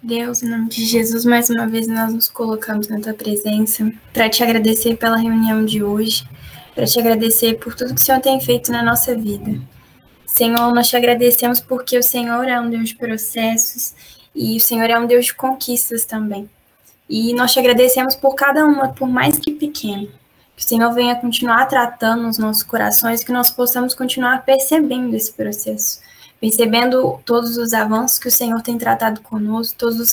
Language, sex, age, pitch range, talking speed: Portuguese, female, 10-29, 225-245 Hz, 185 wpm